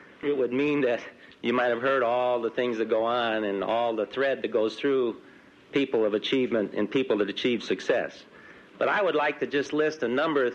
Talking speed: 220 wpm